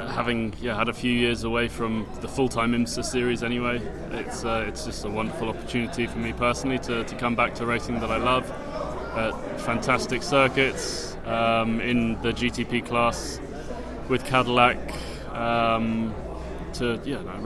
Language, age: English, 20-39